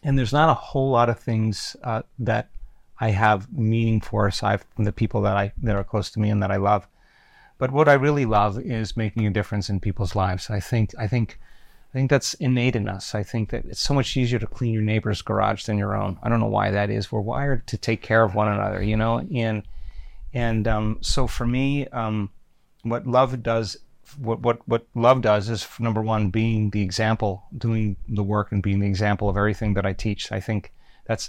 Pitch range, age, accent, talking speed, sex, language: 105-115 Hz, 30-49, American, 230 wpm, male, English